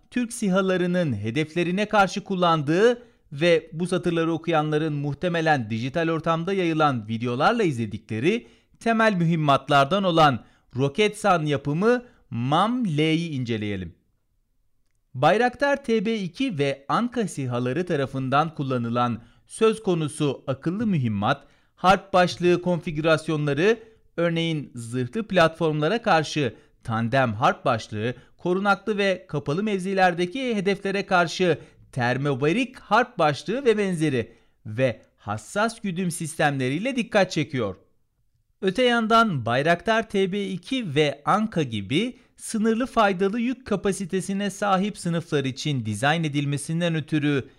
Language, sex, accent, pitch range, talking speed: Turkish, male, native, 135-195 Hz, 100 wpm